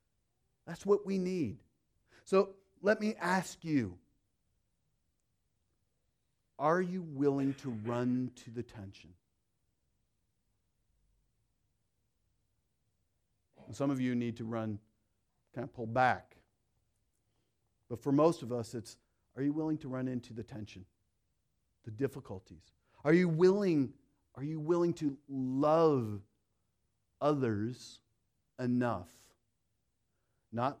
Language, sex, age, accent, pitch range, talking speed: English, male, 40-59, American, 105-155 Hz, 100 wpm